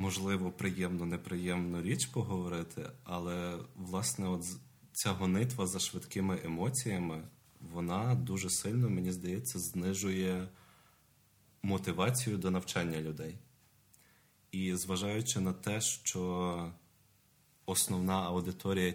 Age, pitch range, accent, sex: 30-49, 85-100 Hz, native, male